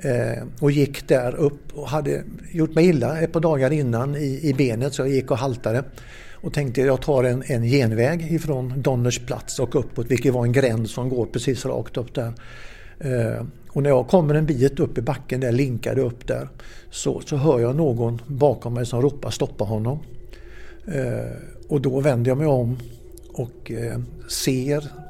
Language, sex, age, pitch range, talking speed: English, male, 60-79, 120-145 Hz, 175 wpm